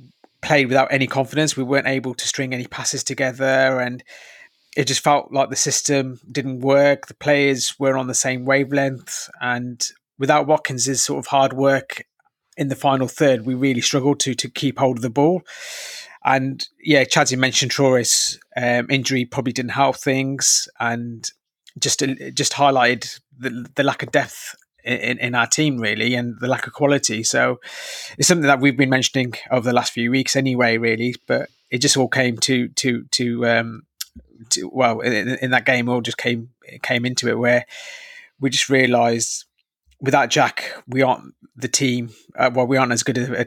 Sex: male